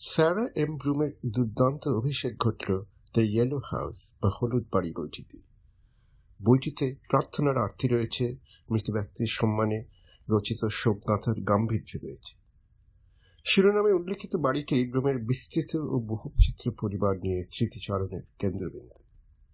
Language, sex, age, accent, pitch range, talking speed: Bengali, male, 50-69, native, 100-130 Hz, 45 wpm